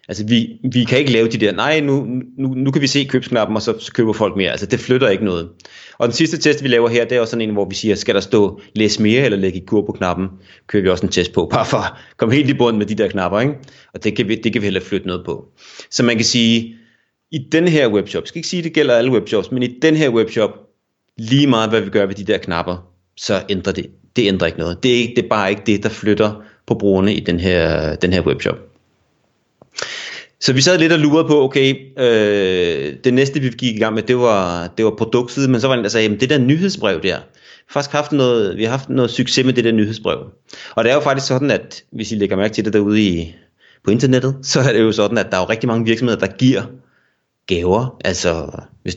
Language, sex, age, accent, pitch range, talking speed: Danish, male, 30-49, native, 100-130 Hz, 260 wpm